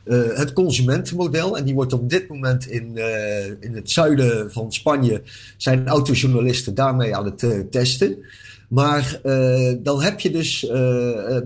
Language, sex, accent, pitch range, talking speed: Dutch, male, Dutch, 120-165 Hz, 160 wpm